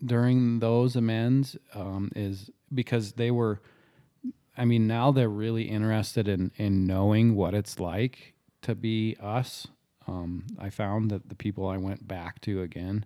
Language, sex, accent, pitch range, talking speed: English, male, American, 95-115 Hz, 155 wpm